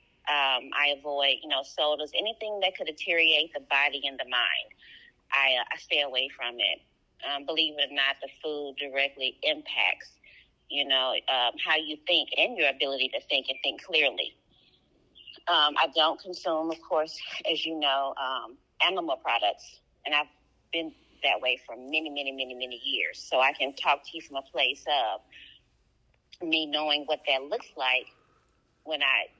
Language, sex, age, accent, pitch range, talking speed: English, female, 30-49, American, 135-160 Hz, 175 wpm